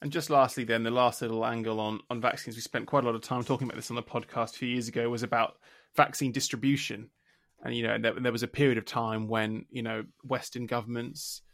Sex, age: male, 20-39